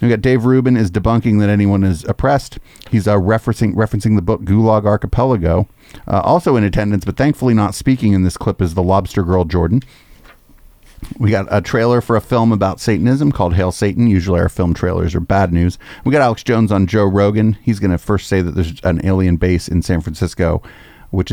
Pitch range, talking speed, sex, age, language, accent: 90-110 Hz, 210 wpm, male, 30-49, English, American